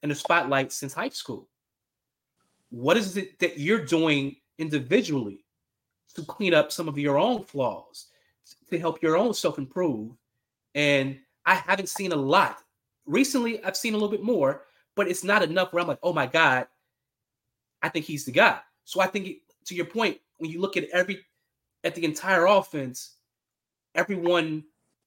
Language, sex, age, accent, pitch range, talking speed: English, male, 20-39, American, 135-175 Hz, 165 wpm